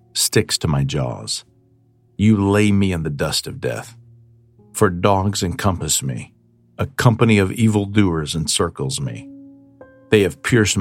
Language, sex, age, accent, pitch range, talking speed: English, male, 50-69, American, 90-115 Hz, 140 wpm